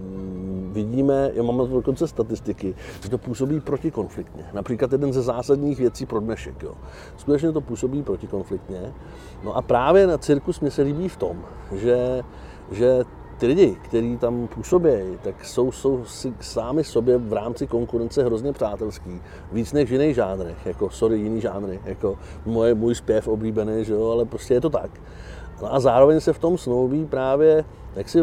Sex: male